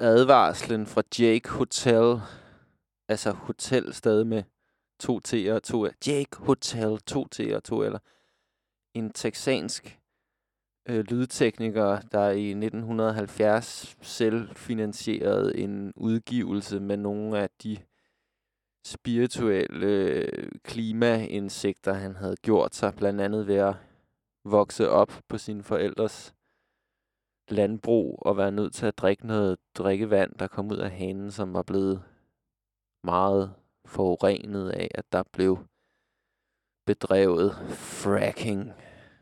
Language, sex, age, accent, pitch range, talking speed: Danish, male, 20-39, native, 100-110 Hz, 115 wpm